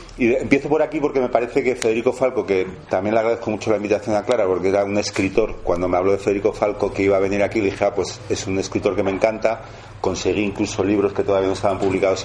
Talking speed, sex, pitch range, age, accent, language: 250 wpm, male, 95-110 Hz, 40-59, Spanish, Spanish